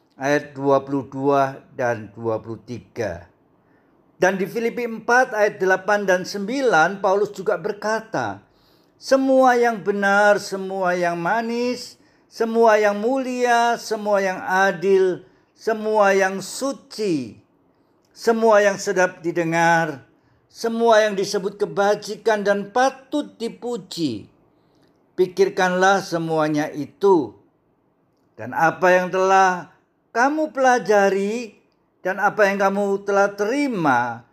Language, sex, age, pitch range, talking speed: Indonesian, male, 50-69, 175-220 Hz, 100 wpm